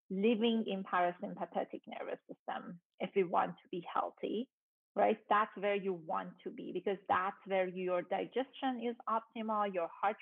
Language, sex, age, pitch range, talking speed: English, female, 30-49, 190-235 Hz, 160 wpm